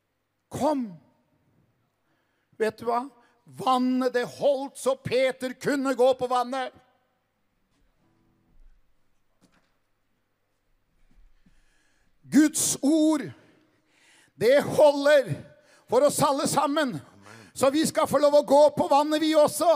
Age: 60-79